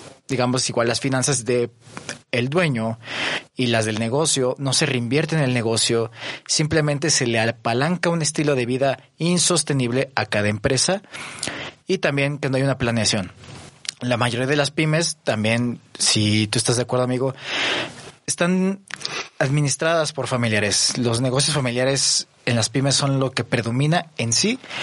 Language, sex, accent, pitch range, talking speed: Spanish, male, Mexican, 120-150 Hz, 155 wpm